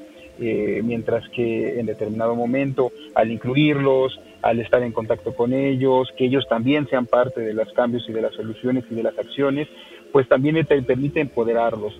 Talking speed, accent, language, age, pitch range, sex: 170 wpm, Mexican, Spanish, 40-59, 115-140 Hz, male